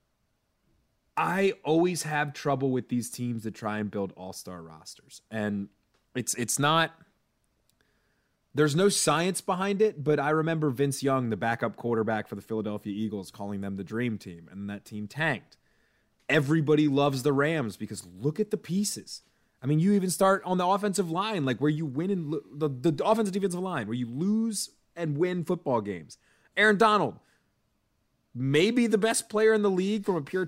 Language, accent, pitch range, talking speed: English, American, 120-180 Hz, 180 wpm